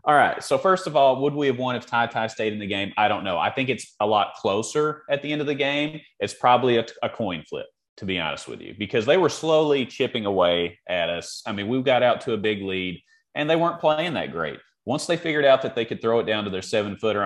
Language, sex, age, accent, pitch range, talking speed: English, male, 30-49, American, 95-125 Hz, 270 wpm